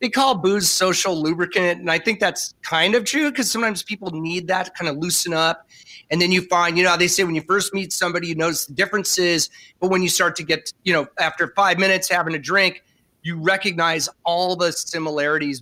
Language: English